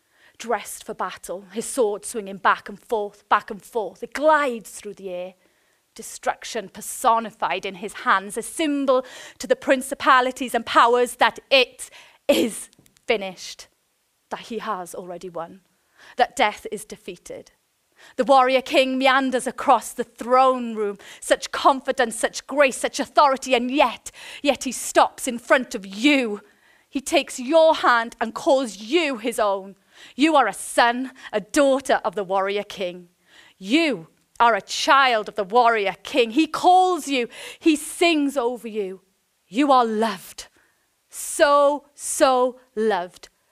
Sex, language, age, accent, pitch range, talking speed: female, English, 30-49, British, 210-275 Hz, 145 wpm